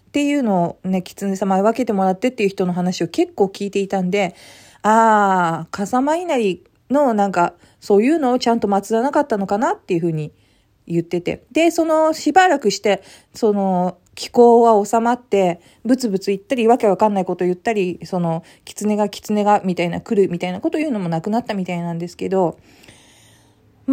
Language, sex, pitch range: Japanese, female, 180-240 Hz